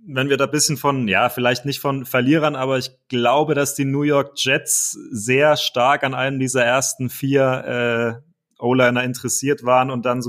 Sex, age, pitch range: male, 30-49, 120-135 Hz